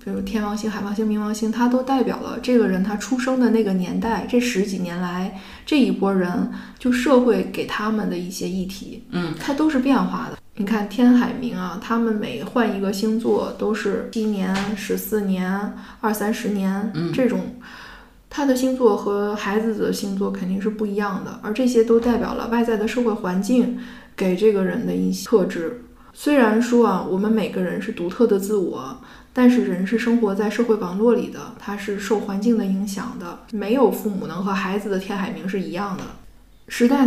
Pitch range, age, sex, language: 200-235 Hz, 10-29, female, Chinese